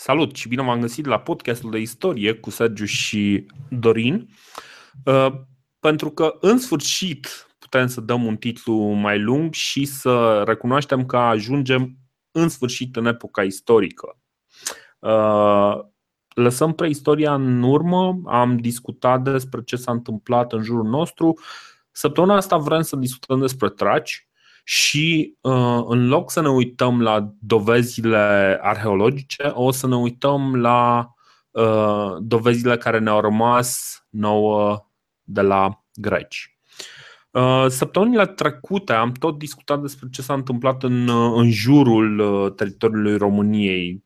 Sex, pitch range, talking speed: male, 115-140 Hz, 120 wpm